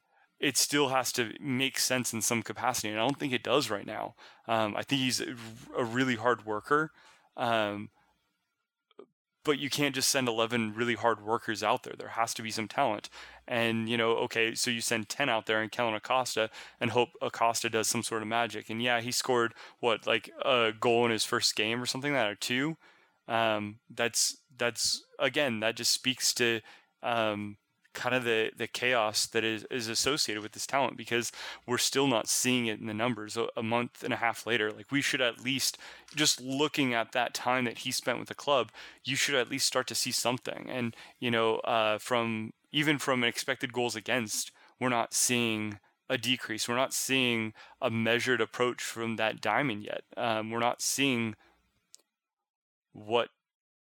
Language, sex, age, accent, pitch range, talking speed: English, male, 20-39, American, 110-130 Hz, 190 wpm